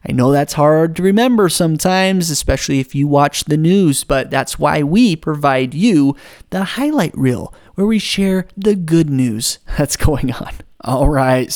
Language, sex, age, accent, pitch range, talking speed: English, male, 30-49, American, 135-165 Hz, 170 wpm